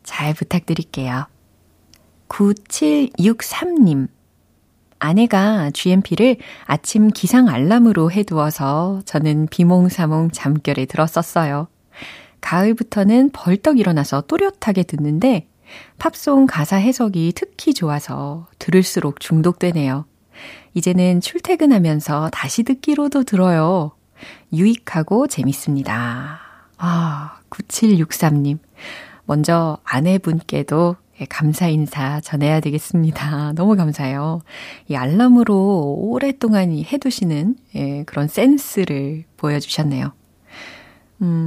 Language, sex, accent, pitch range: Korean, female, native, 150-210 Hz